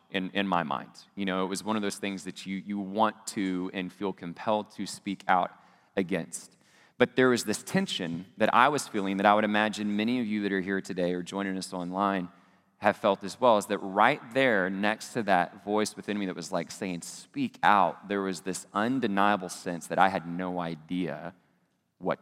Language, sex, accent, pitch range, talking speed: English, male, American, 95-105 Hz, 215 wpm